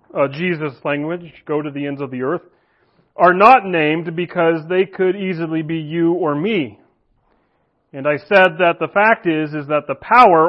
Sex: male